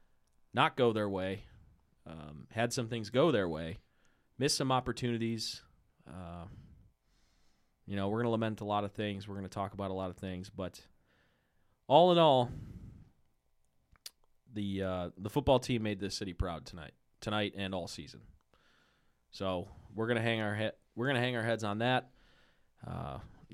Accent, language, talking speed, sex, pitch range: American, English, 165 wpm, male, 85-115 Hz